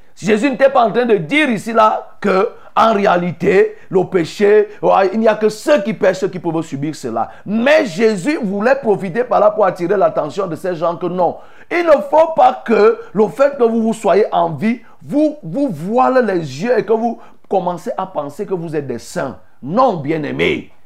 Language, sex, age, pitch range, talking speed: French, male, 50-69, 175-245 Hz, 195 wpm